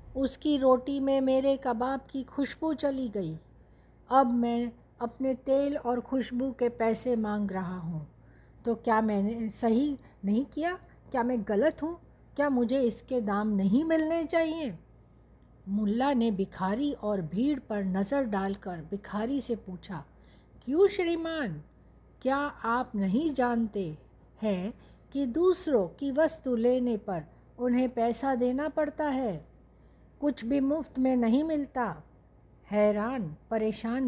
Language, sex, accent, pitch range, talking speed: Hindi, female, native, 210-275 Hz, 130 wpm